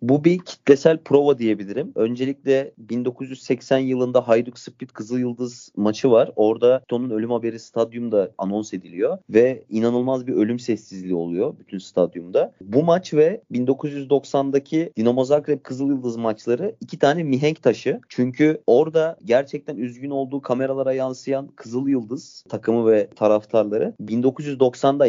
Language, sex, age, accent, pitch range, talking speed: Turkish, male, 30-49, native, 110-145 Hz, 125 wpm